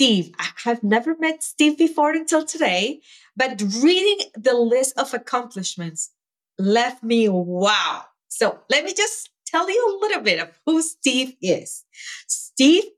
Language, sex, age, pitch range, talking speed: English, female, 30-49, 210-290 Hz, 150 wpm